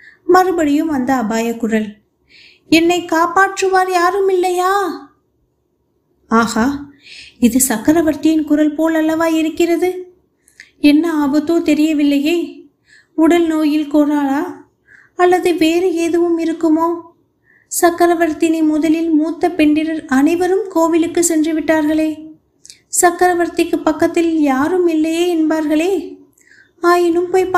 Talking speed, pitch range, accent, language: 45 wpm, 275-335 Hz, native, Tamil